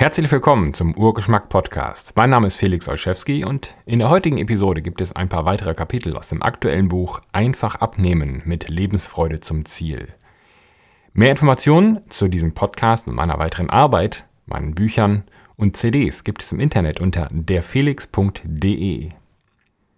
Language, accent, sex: German, German, male